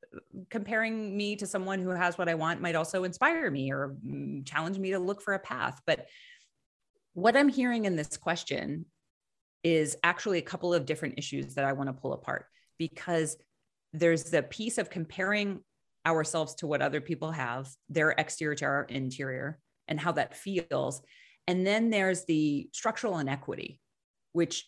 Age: 30-49